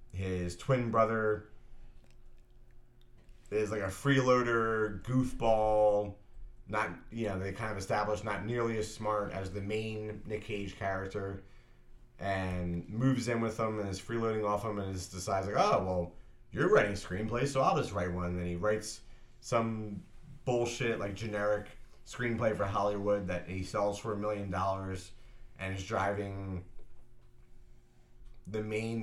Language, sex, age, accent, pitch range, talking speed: English, male, 30-49, American, 95-115 Hz, 145 wpm